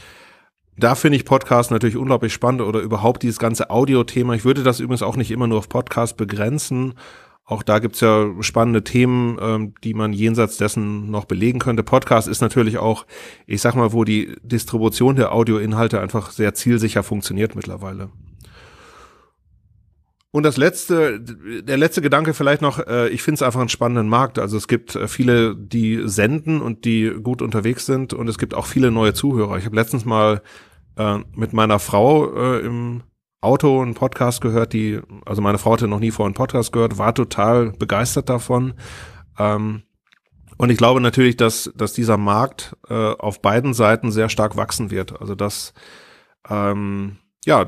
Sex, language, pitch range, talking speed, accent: male, German, 105-125 Hz, 170 wpm, German